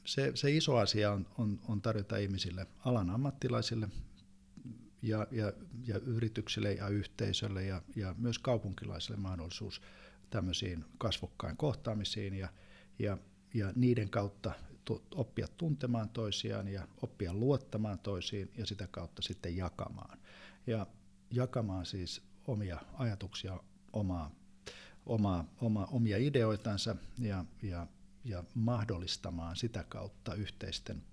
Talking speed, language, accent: 100 wpm, Finnish, native